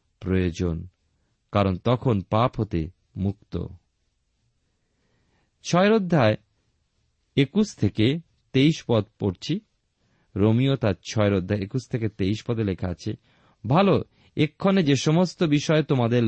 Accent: native